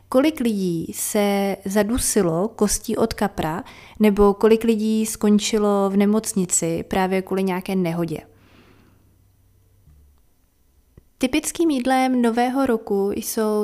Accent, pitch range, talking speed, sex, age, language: native, 185-225 Hz, 95 wpm, female, 30-49, Czech